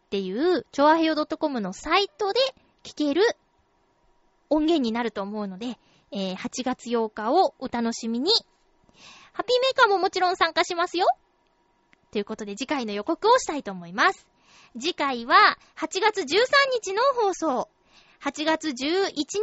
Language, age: Japanese, 20-39